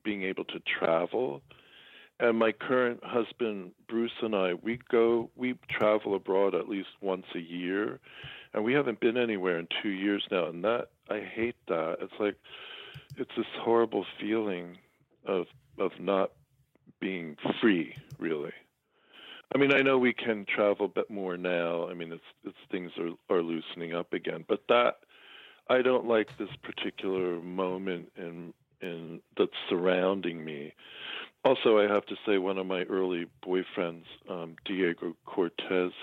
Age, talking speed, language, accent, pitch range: 50-69, 155 wpm, English, American, 85-115 Hz